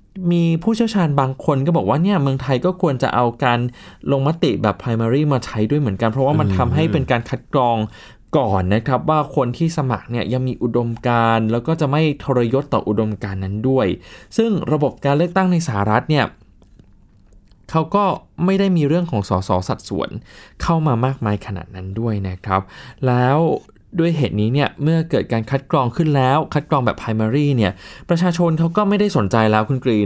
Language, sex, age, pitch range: Thai, male, 20-39, 105-150 Hz